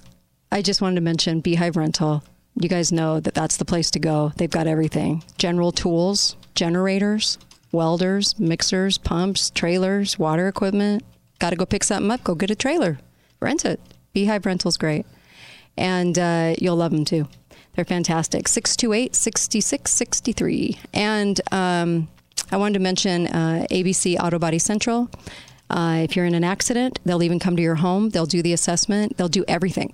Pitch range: 165-190 Hz